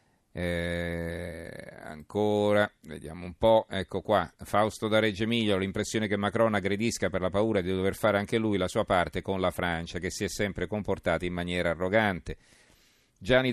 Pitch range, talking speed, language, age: 90-105 Hz, 175 wpm, Italian, 40-59